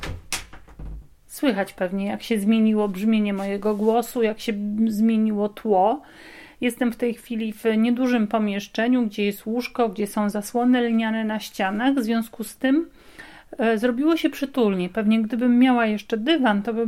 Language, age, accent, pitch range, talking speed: Polish, 40-59, native, 205-245 Hz, 150 wpm